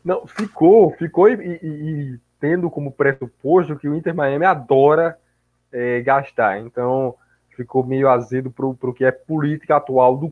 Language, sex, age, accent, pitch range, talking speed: Portuguese, male, 20-39, Brazilian, 120-155 Hz, 155 wpm